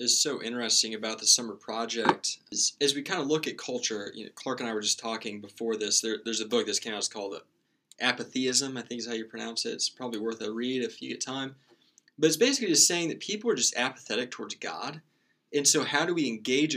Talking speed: 245 wpm